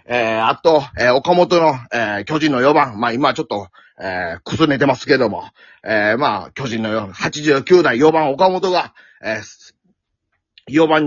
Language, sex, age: Japanese, male, 30-49